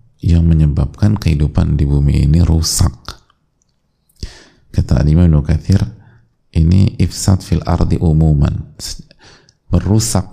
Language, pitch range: Indonesian, 80-110 Hz